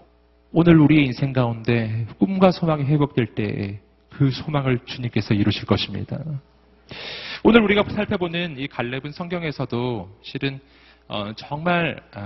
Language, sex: Korean, male